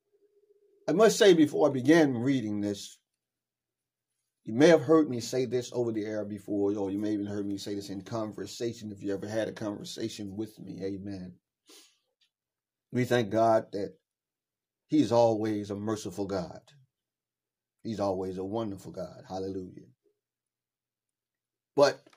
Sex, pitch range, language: male, 105-155 Hz, English